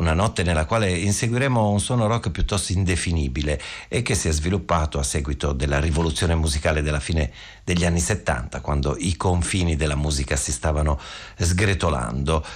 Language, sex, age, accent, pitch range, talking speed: Italian, male, 50-69, native, 80-100 Hz, 160 wpm